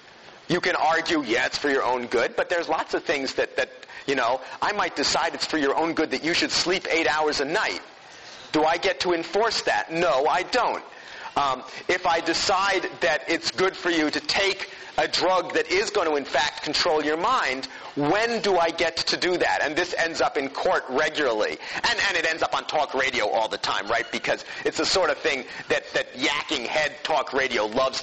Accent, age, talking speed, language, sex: American, 40-59, 225 wpm, English, male